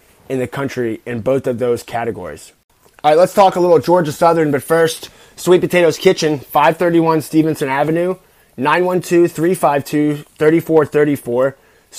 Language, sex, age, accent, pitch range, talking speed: English, male, 20-39, American, 130-160 Hz, 125 wpm